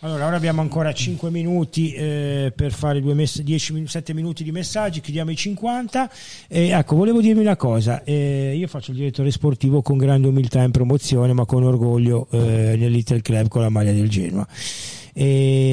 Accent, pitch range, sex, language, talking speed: native, 125-155 Hz, male, Italian, 185 wpm